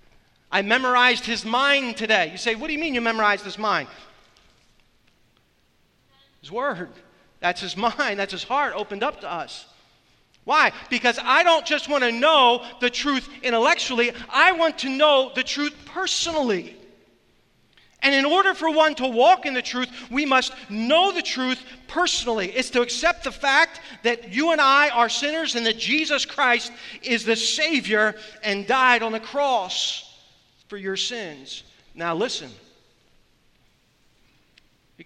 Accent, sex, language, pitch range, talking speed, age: American, male, English, 195-275 Hz, 155 wpm, 40-59